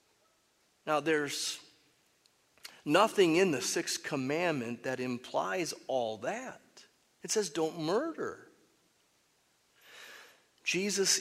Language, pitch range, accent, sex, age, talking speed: English, 130-195 Hz, American, male, 40-59, 85 wpm